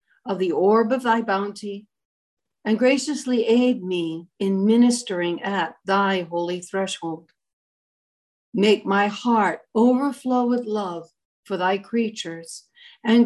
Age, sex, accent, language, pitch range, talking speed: 60-79, female, American, English, 190-235 Hz, 120 wpm